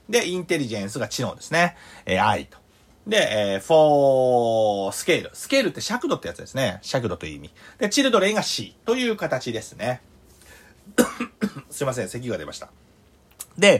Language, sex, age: Japanese, male, 40-59